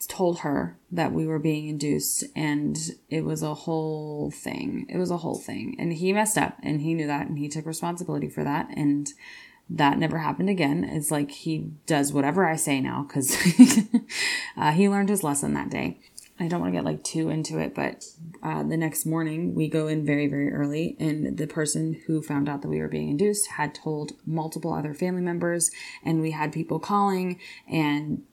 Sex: female